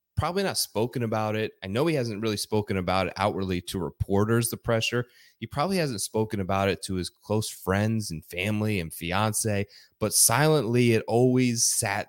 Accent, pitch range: American, 95-130 Hz